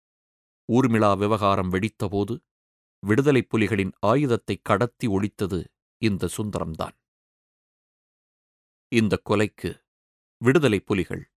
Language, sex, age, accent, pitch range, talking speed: Tamil, male, 30-49, native, 90-125 Hz, 65 wpm